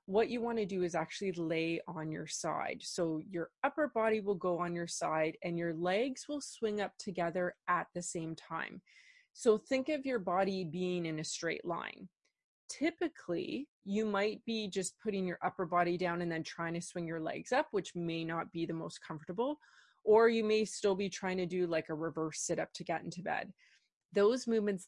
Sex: female